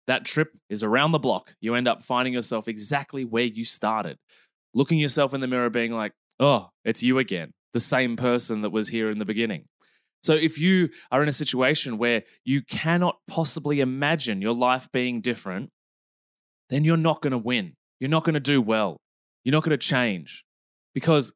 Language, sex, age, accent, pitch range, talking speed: English, male, 20-39, Australian, 120-160 Hz, 195 wpm